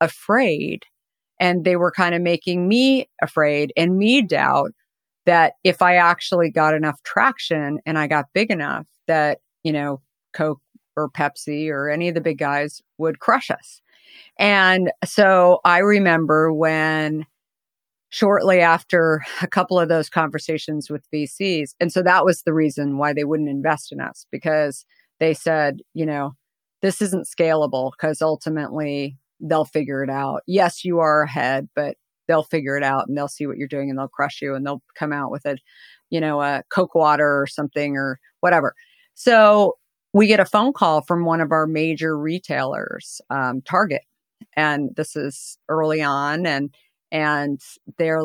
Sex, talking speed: female, 170 wpm